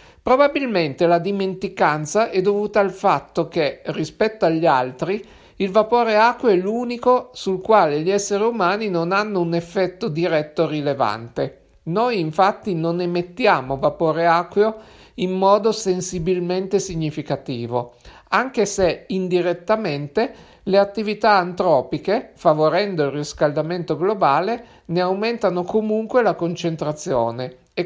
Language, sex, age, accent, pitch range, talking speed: Italian, male, 50-69, native, 155-200 Hz, 115 wpm